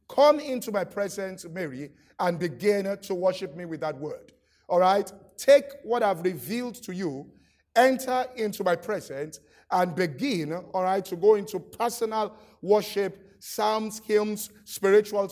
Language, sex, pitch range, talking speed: English, male, 180-225 Hz, 145 wpm